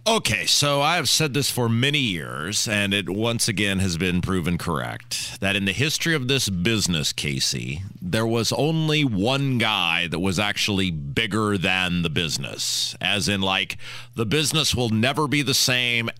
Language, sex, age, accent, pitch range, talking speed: English, male, 40-59, American, 100-125 Hz, 175 wpm